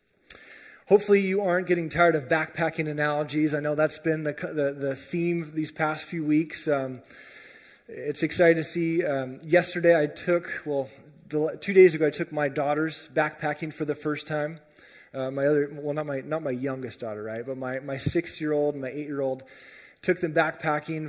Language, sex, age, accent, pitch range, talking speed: English, male, 30-49, American, 140-160 Hz, 205 wpm